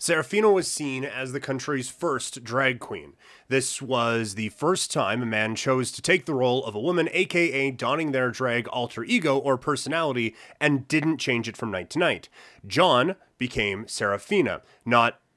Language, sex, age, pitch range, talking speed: English, male, 30-49, 115-140 Hz, 170 wpm